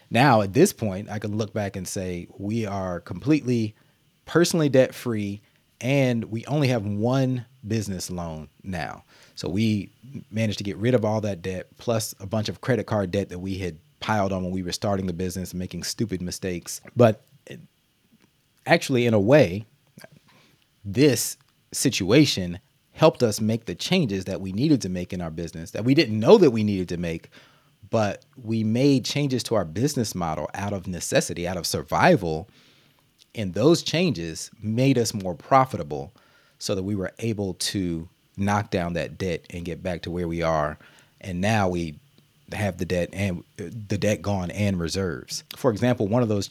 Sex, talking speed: male, 180 wpm